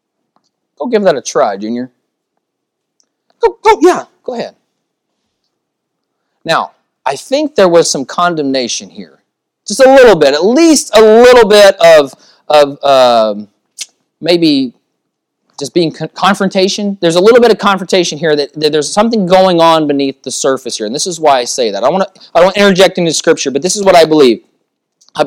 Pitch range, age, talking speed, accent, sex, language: 160-240 Hz, 30-49, 175 wpm, American, male, English